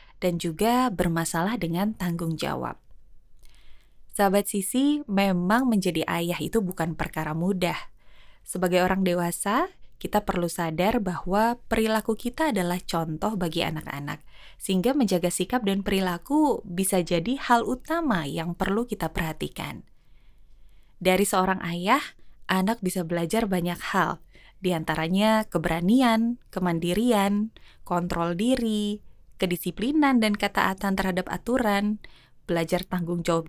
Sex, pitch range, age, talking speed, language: female, 175-230 Hz, 20-39, 115 wpm, Indonesian